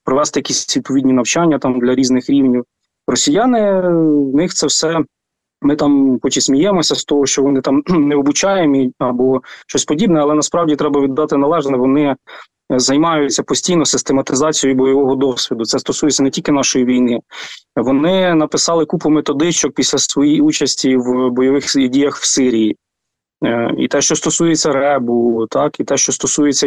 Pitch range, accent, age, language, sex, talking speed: 130-150 Hz, native, 20-39, Ukrainian, male, 150 wpm